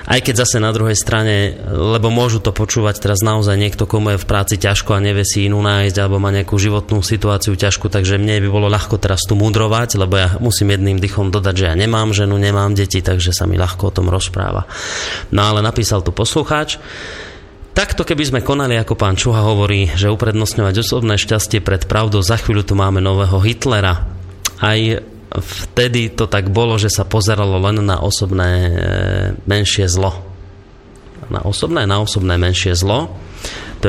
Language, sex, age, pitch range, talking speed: Slovak, male, 30-49, 95-115 Hz, 180 wpm